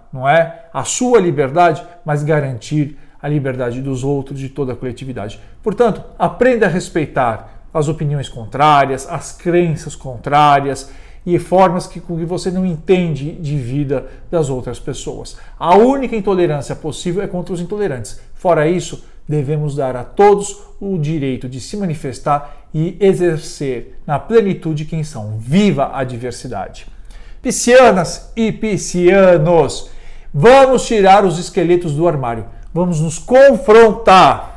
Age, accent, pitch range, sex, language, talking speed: 50-69, Brazilian, 135-180 Hz, male, Portuguese, 130 wpm